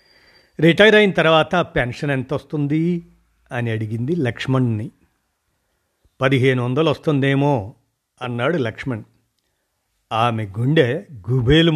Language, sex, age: Telugu, male, 50-69